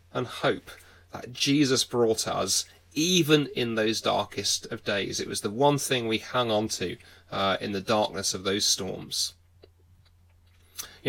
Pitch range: 100-140 Hz